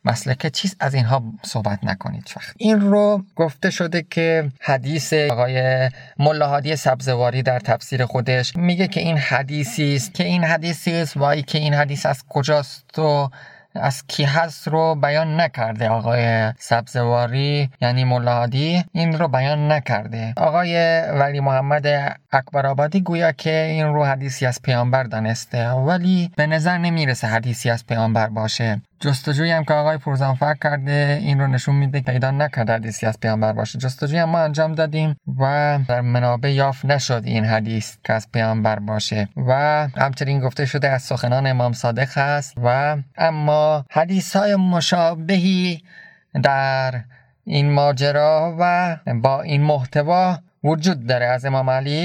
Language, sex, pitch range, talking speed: Persian, male, 125-160 Hz, 145 wpm